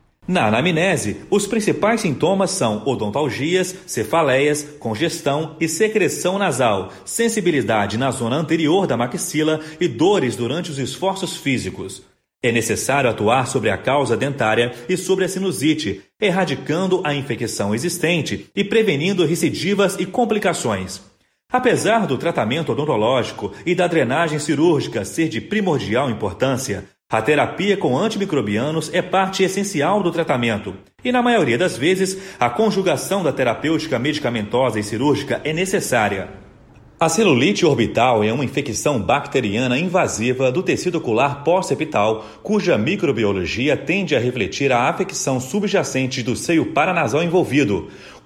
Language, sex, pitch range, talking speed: Portuguese, male, 125-185 Hz, 130 wpm